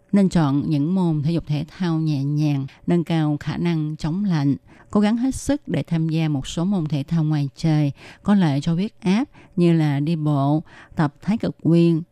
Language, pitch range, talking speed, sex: Vietnamese, 150-195 Hz, 215 wpm, female